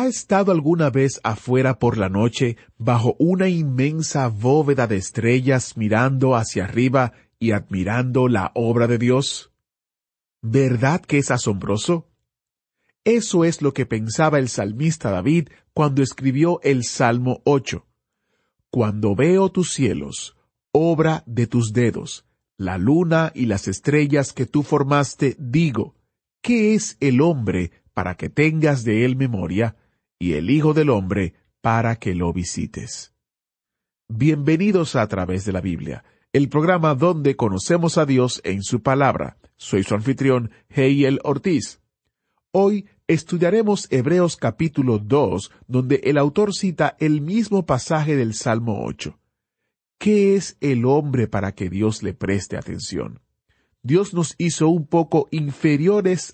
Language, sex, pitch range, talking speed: Spanish, male, 115-160 Hz, 135 wpm